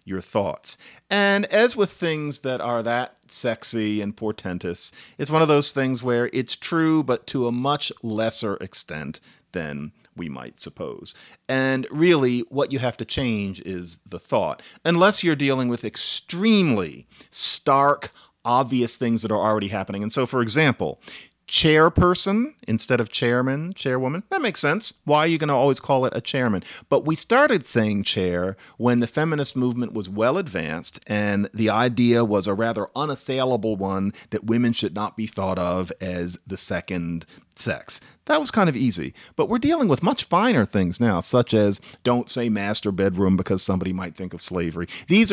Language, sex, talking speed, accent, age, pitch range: English, male, 175 wpm, American, 40-59, 100-150 Hz